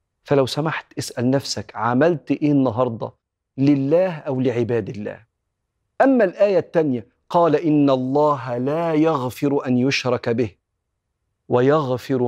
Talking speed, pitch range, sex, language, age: 110 wpm, 120-155 Hz, male, Arabic, 40-59